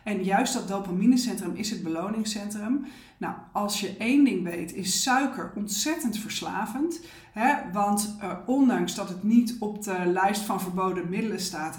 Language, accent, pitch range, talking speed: Dutch, Dutch, 175-215 Hz, 160 wpm